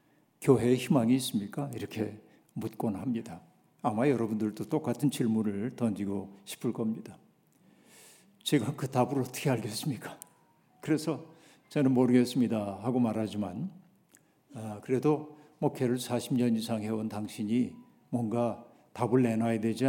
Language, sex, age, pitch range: Korean, male, 50-69, 115-145 Hz